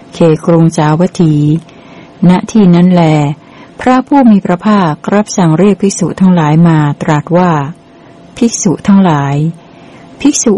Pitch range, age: 160-200 Hz, 60-79